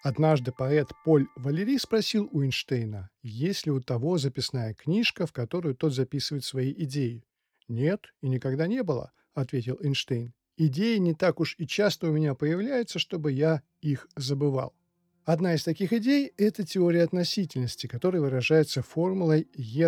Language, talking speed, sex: Russian, 155 wpm, male